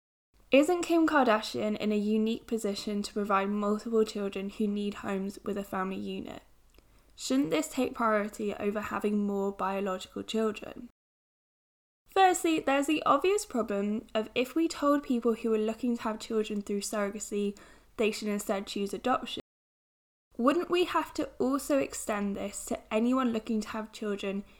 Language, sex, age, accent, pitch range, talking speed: English, female, 10-29, British, 205-265 Hz, 155 wpm